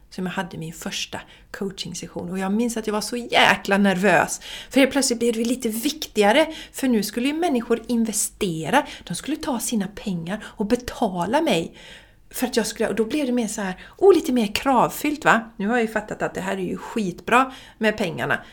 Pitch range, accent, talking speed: 180-240 Hz, native, 210 wpm